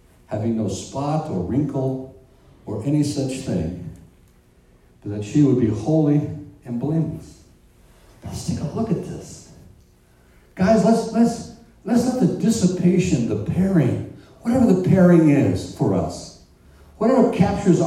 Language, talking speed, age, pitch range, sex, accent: English, 135 wpm, 60-79, 125-190 Hz, male, American